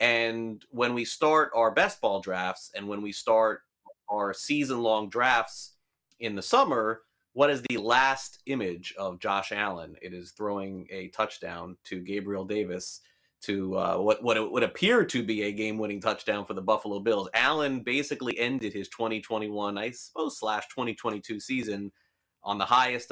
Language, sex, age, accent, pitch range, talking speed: English, male, 30-49, American, 100-135 Hz, 165 wpm